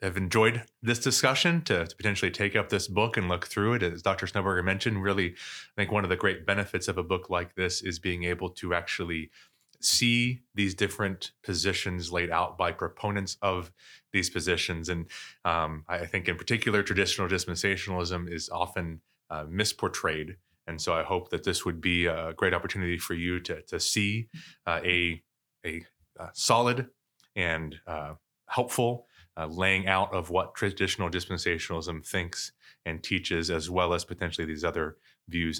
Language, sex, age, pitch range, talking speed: English, male, 20-39, 85-110 Hz, 170 wpm